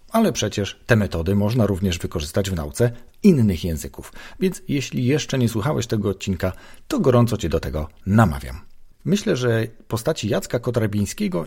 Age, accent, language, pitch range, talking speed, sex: 40-59, native, Polish, 95-125 Hz, 150 wpm, male